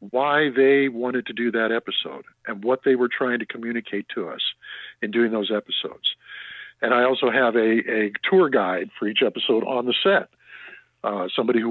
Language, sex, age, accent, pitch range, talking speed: English, male, 50-69, American, 115-140 Hz, 190 wpm